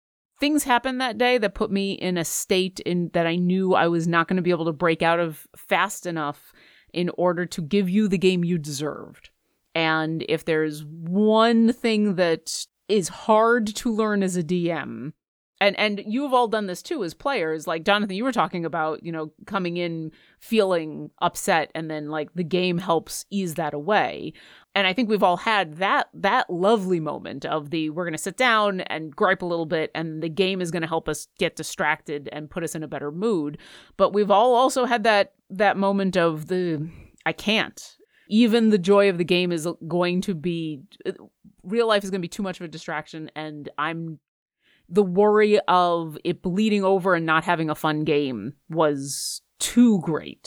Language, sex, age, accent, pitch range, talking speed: English, female, 30-49, American, 160-205 Hz, 200 wpm